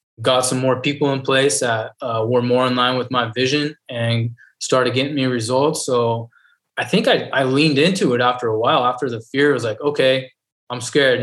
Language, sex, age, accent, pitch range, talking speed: English, male, 20-39, American, 120-140 Hz, 210 wpm